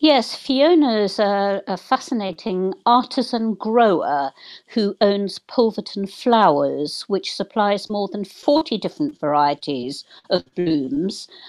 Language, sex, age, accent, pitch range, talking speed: English, female, 50-69, British, 170-225 Hz, 105 wpm